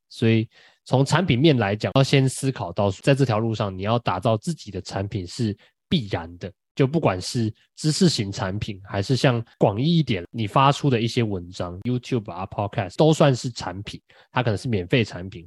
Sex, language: male, Chinese